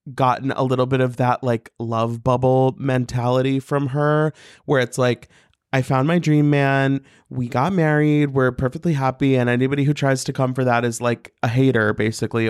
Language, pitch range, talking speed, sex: English, 120-155 Hz, 185 wpm, male